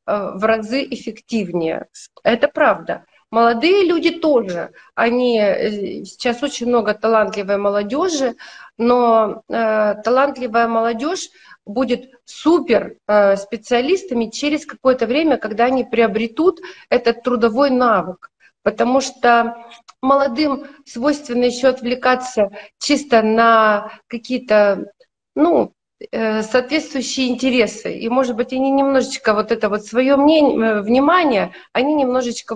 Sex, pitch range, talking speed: female, 220-285 Hz, 100 wpm